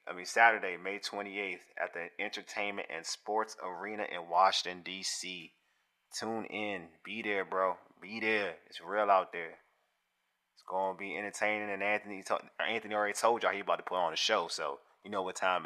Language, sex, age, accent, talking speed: English, male, 30-49, American, 185 wpm